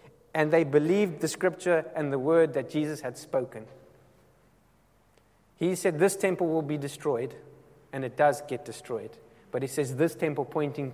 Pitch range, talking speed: 125-165 Hz, 165 wpm